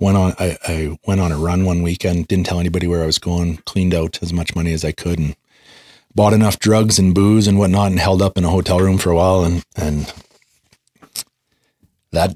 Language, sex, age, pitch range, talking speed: English, male, 30-49, 80-95 Hz, 225 wpm